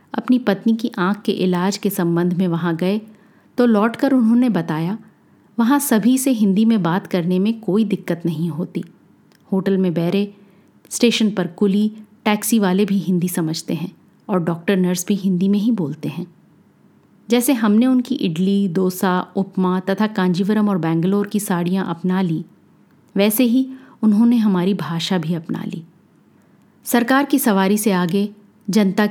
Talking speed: 155 wpm